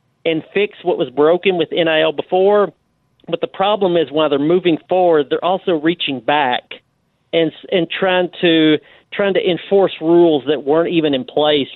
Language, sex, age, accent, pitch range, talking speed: English, male, 40-59, American, 140-175 Hz, 170 wpm